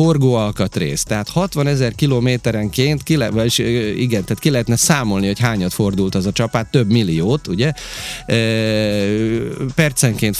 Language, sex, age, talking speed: Hungarian, male, 30-49, 135 wpm